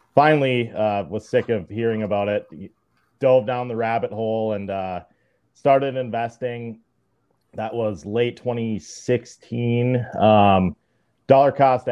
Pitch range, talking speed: 105-120 Hz, 120 wpm